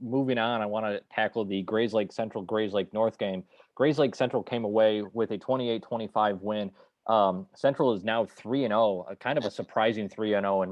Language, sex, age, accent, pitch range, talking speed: English, male, 20-39, American, 100-120 Hz, 205 wpm